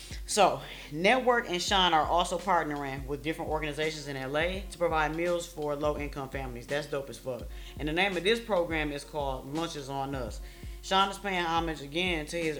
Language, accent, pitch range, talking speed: English, American, 135-165 Hz, 190 wpm